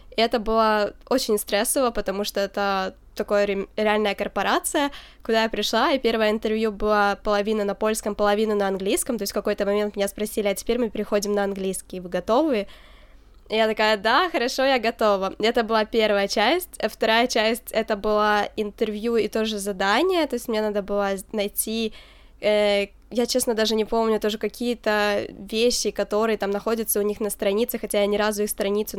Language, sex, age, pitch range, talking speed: Ukrainian, female, 10-29, 200-225 Hz, 180 wpm